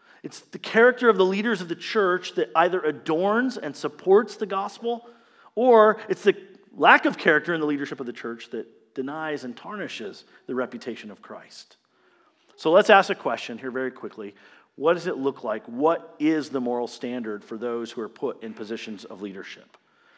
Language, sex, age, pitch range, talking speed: English, male, 40-59, 145-200 Hz, 185 wpm